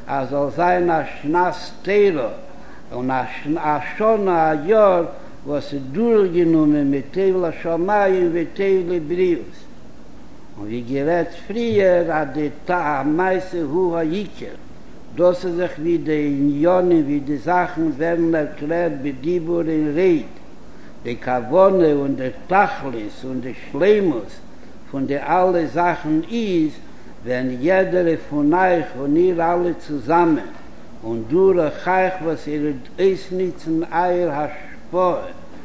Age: 60-79